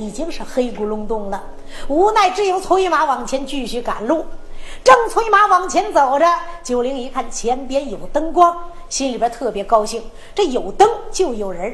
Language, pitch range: Chinese, 250-370 Hz